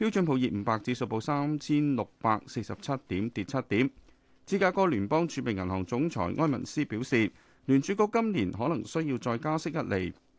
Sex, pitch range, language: male, 110-150 Hz, Chinese